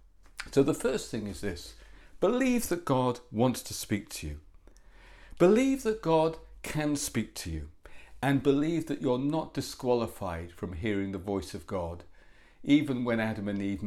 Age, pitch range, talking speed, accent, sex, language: 50-69, 100-130 Hz, 165 wpm, British, male, English